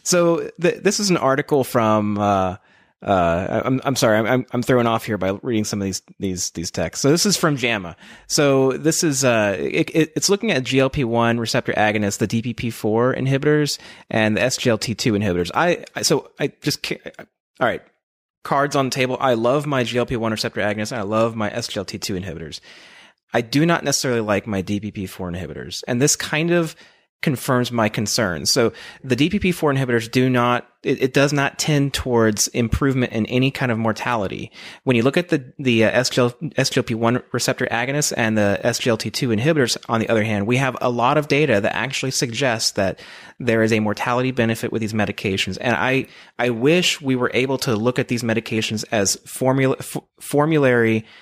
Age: 30-49